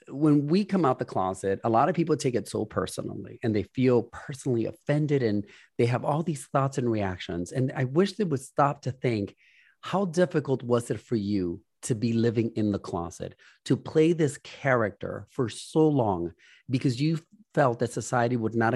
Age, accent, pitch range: 30-49, American, 115-155 Hz